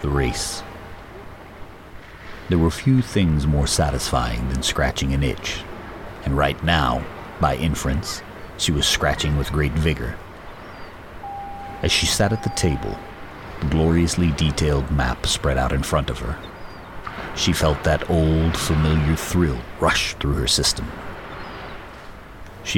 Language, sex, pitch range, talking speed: English, male, 70-90 Hz, 130 wpm